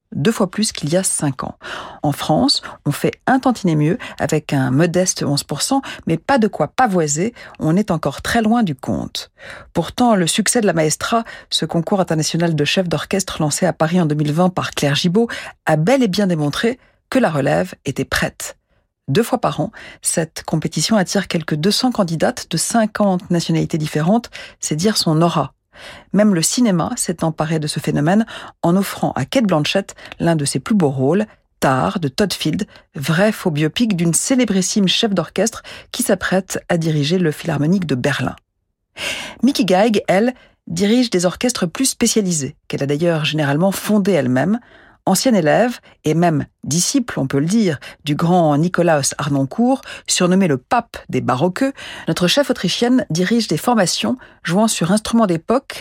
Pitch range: 155-215 Hz